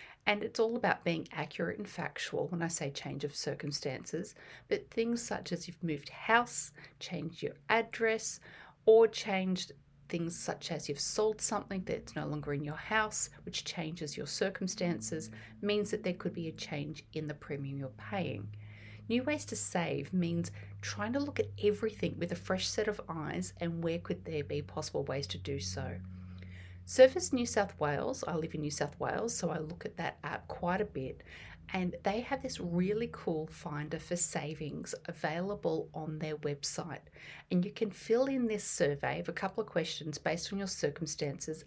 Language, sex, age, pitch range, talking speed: English, female, 40-59, 150-210 Hz, 185 wpm